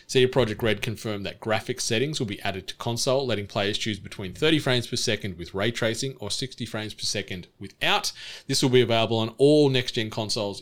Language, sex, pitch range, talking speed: English, male, 110-130 Hz, 210 wpm